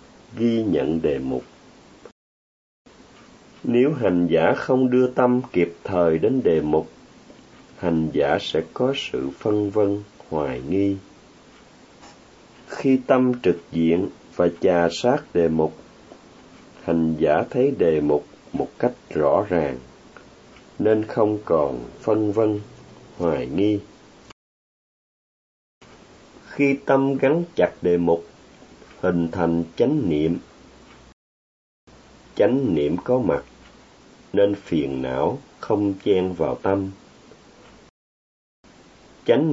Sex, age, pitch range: male, 30-49, 80-110 Hz